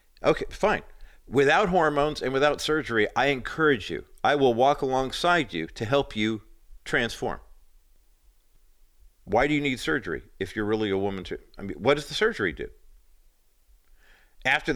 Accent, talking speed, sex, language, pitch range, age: American, 155 wpm, male, English, 95-140 Hz, 50-69